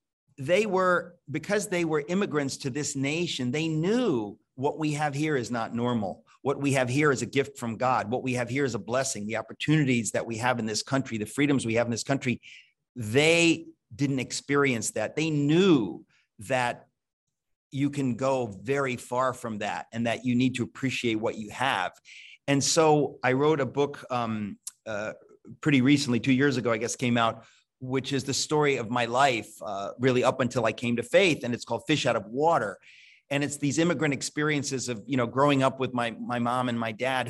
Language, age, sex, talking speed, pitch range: English, 40-59, male, 205 wpm, 120-150 Hz